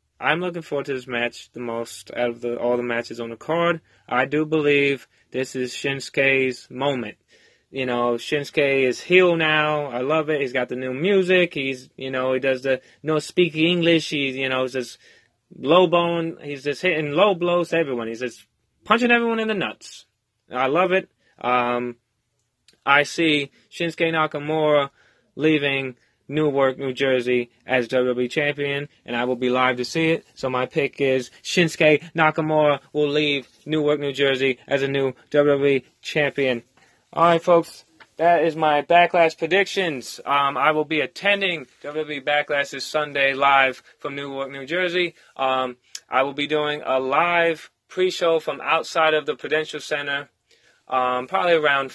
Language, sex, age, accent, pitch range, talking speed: English, male, 20-39, American, 125-155 Hz, 170 wpm